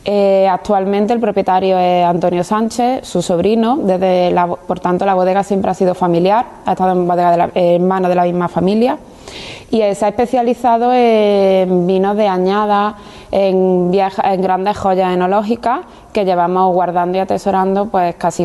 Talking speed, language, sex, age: 155 wpm, Spanish, female, 20-39